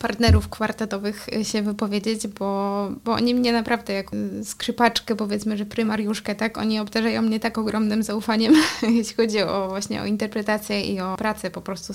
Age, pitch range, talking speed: 20-39, 195-225 Hz, 160 wpm